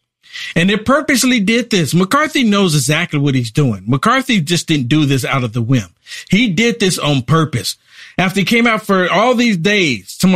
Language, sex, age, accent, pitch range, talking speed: English, male, 50-69, American, 150-225 Hz, 195 wpm